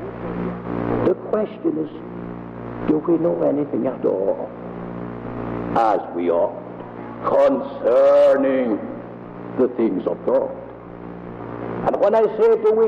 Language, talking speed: English, 105 wpm